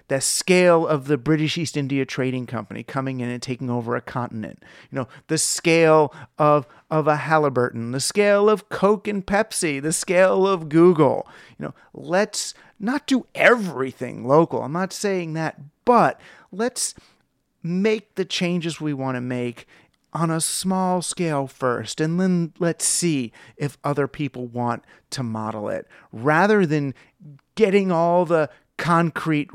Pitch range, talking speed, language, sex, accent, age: 130-170 Hz, 155 wpm, English, male, American, 40-59